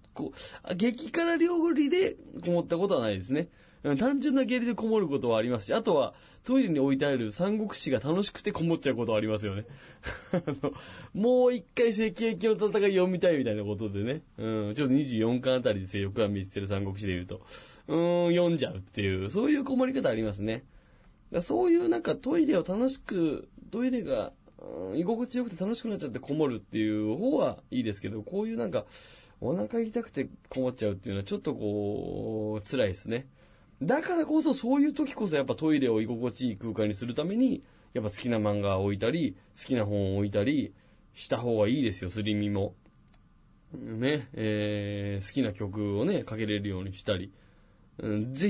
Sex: male